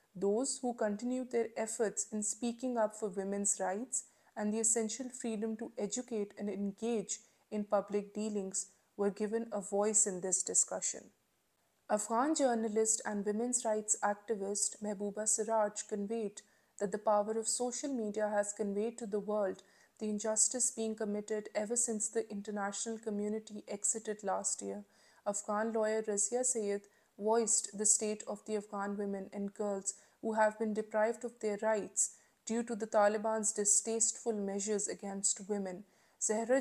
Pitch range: 205-225 Hz